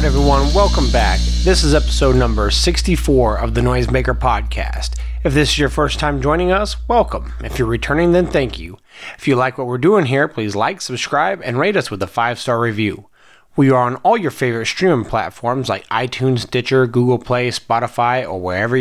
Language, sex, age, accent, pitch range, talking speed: English, male, 30-49, American, 120-145 Hz, 190 wpm